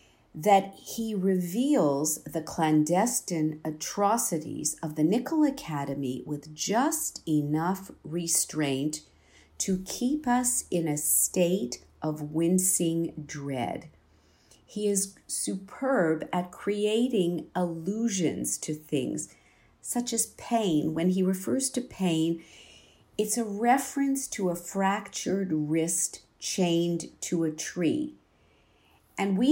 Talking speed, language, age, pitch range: 105 wpm, English, 50-69, 155-200 Hz